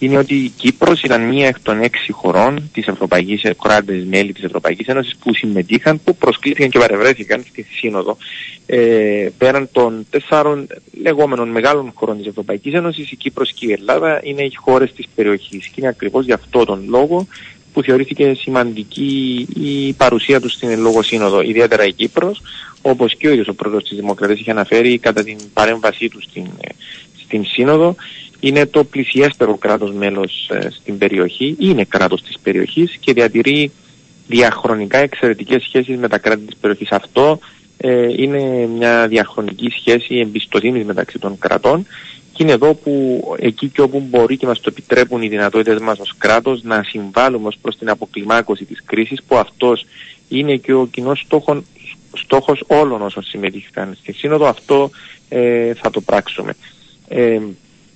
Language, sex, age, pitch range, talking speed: Greek, male, 30-49, 110-140 Hz, 165 wpm